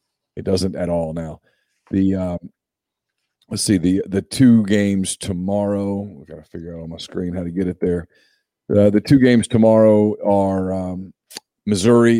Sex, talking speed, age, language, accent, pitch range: male, 170 wpm, 40-59, English, American, 95-115 Hz